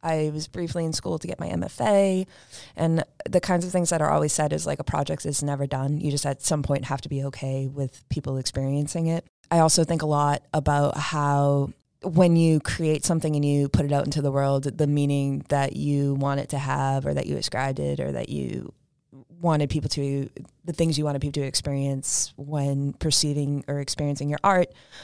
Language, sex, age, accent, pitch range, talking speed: English, female, 20-39, American, 140-160 Hz, 215 wpm